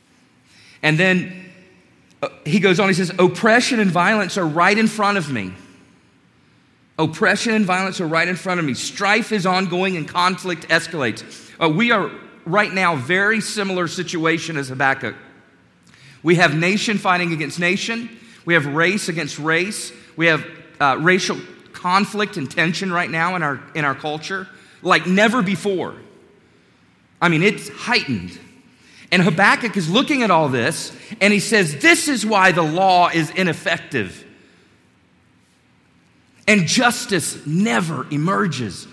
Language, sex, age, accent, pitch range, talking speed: English, male, 40-59, American, 160-205 Hz, 145 wpm